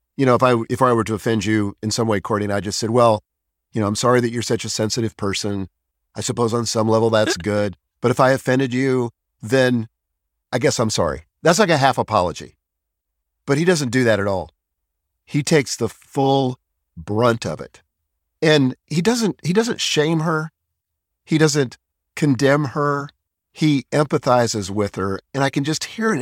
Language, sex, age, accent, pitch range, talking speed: English, male, 50-69, American, 95-135 Hz, 195 wpm